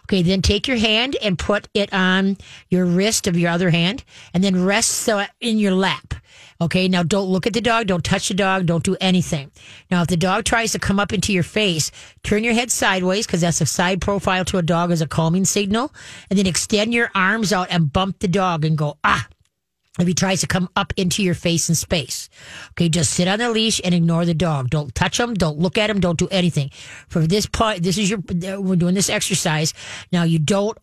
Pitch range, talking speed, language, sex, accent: 170-205 Hz, 235 wpm, English, female, American